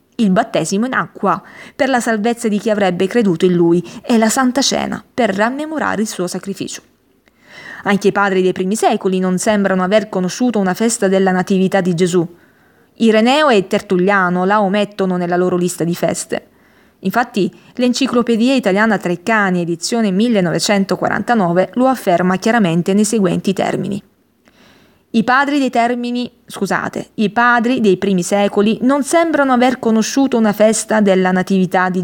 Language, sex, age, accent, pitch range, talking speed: Italian, female, 20-39, native, 190-240 Hz, 150 wpm